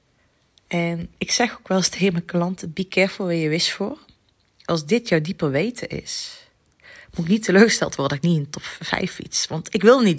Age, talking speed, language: 30-49, 220 wpm, Dutch